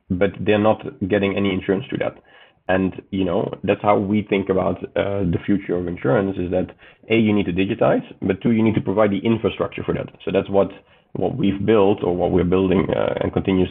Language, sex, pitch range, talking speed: English, male, 90-100 Hz, 225 wpm